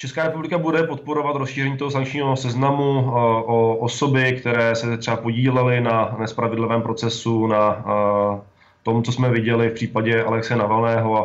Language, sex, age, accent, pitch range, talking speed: Czech, male, 20-39, native, 105-120 Hz, 140 wpm